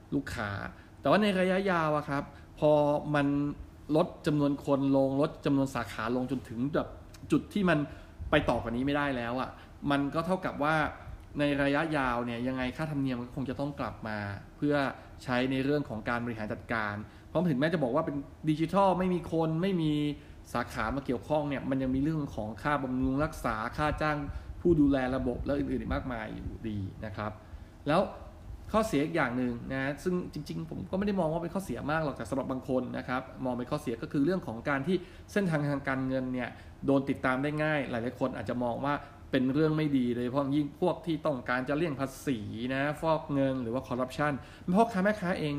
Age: 20-39